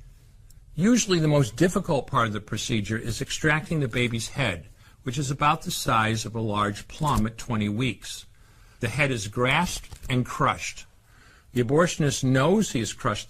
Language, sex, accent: French, male, American